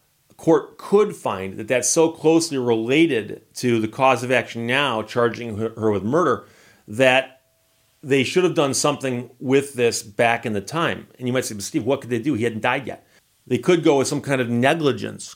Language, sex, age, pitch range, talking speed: English, male, 40-59, 110-135 Hz, 200 wpm